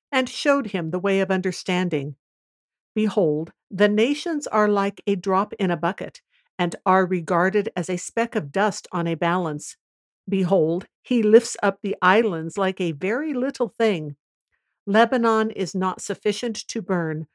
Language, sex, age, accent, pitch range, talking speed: English, female, 60-79, American, 175-220 Hz, 155 wpm